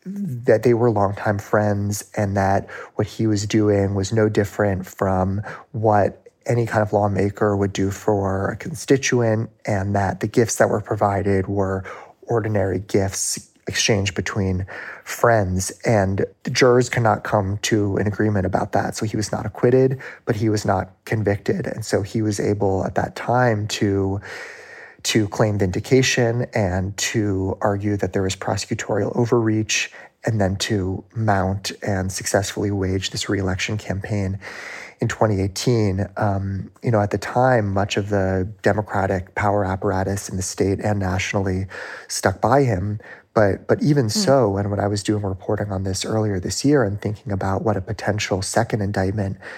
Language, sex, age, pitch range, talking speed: English, male, 30-49, 95-110 Hz, 160 wpm